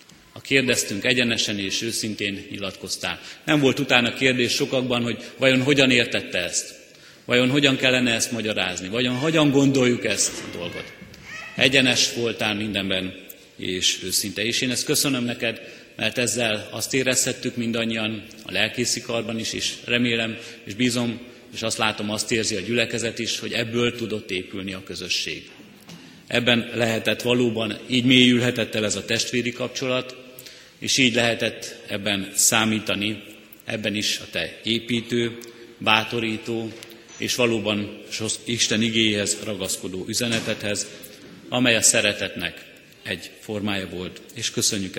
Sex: male